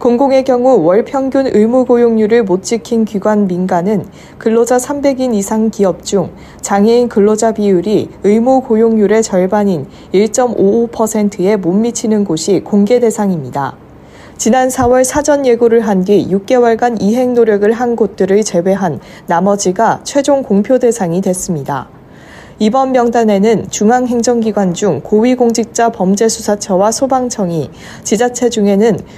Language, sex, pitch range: Korean, female, 200-245 Hz